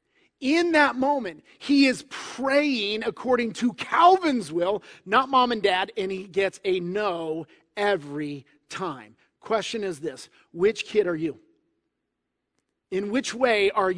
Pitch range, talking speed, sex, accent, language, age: 200-285 Hz, 135 wpm, male, American, English, 30-49